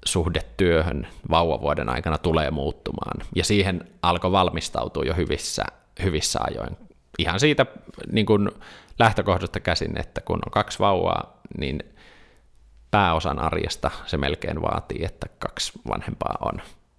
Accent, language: native, Finnish